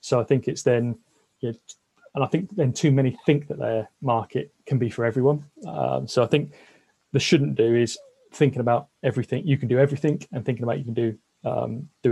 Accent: British